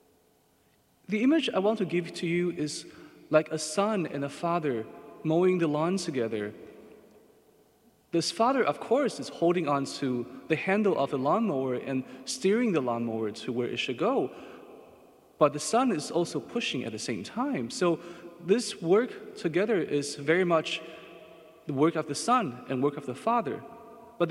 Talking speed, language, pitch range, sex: 170 wpm, English, 155-205 Hz, male